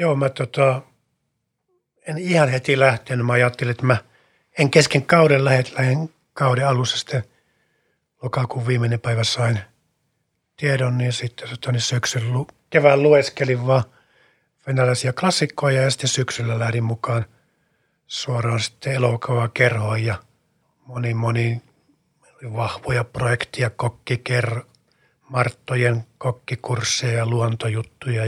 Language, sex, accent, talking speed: Finnish, male, native, 110 wpm